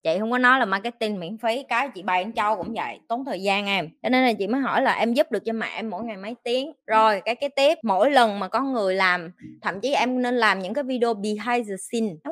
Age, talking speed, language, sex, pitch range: 20-39, 285 wpm, Vietnamese, female, 210-265 Hz